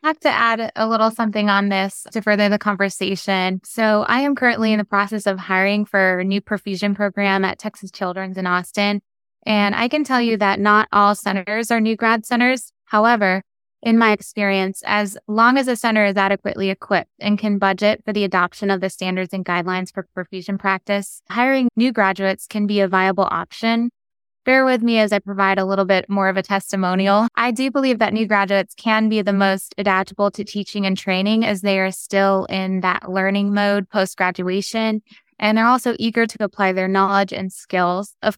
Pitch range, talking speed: 195-220 Hz, 200 wpm